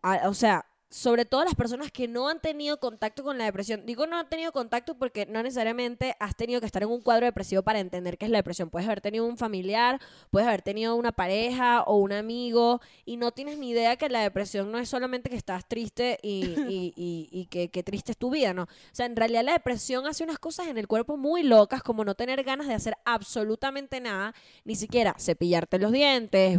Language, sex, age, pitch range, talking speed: Spanish, female, 10-29, 195-255 Hz, 230 wpm